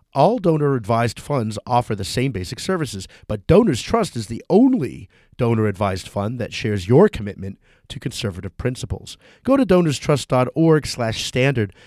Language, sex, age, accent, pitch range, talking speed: English, male, 40-59, American, 105-145 Hz, 130 wpm